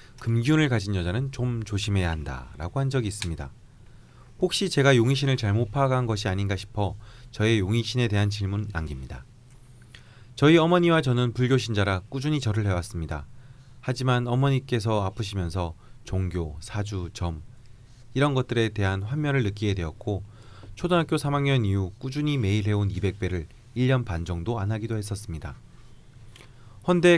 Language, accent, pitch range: Korean, native, 100-130 Hz